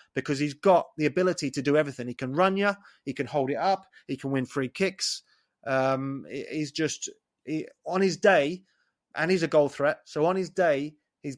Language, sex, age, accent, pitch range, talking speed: English, male, 30-49, British, 130-155 Hz, 205 wpm